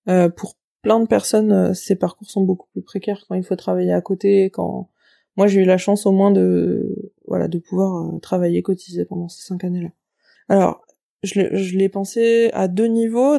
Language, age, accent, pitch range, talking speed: French, 20-39, French, 185-210 Hz, 205 wpm